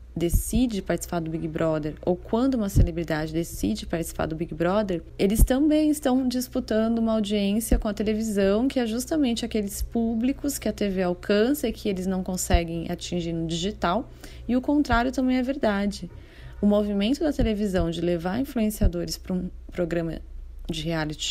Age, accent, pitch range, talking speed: 30-49, Brazilian, 170-220 Hz, 165 wpm